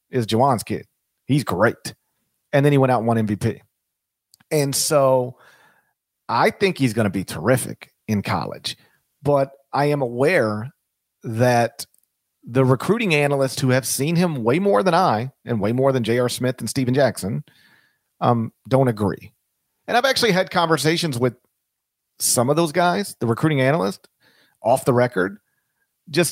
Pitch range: 115-155 Hz